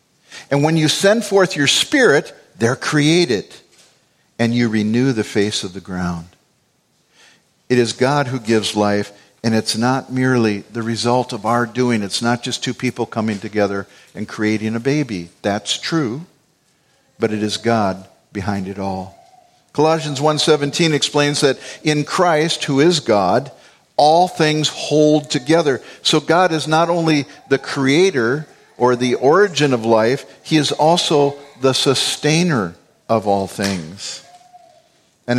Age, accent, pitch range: 50-69, American, 115-155 Hz